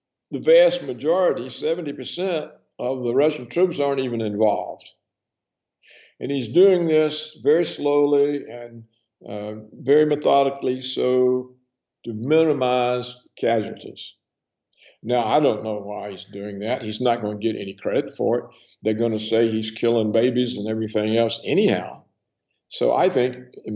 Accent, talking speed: American, 145 wpm